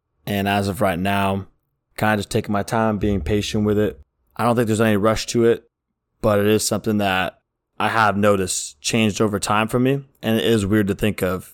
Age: 20-39